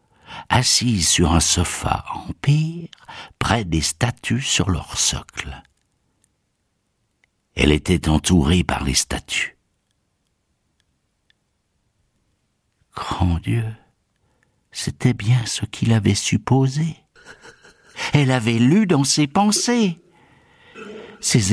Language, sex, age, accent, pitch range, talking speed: French, male, 60-79, French, 90-140 Hz, 90 wpm